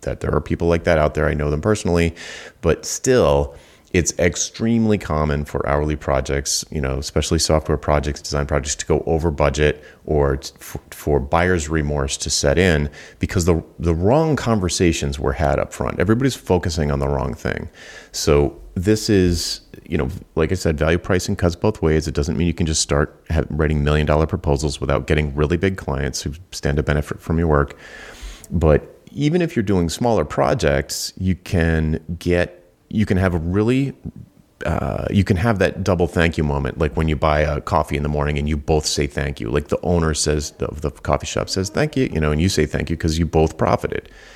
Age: 30-49